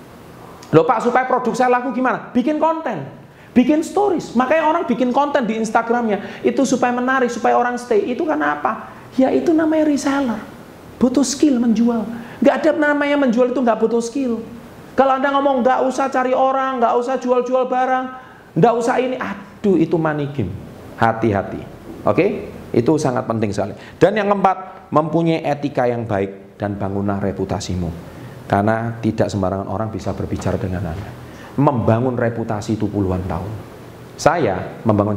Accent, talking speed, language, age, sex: native, 155 wpm, Indonesian, 40-59, male